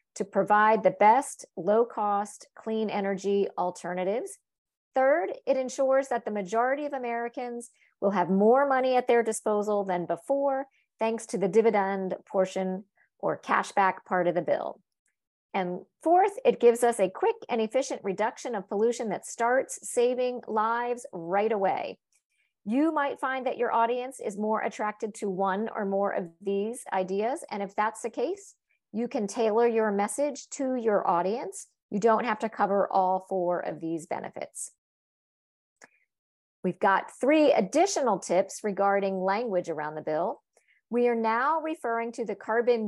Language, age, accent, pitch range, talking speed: English, 50-69, American, 200-250 Hz, 155 wpm